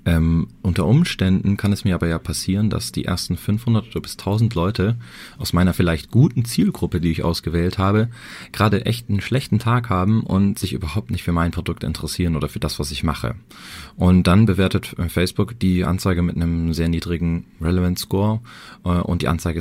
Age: 30-49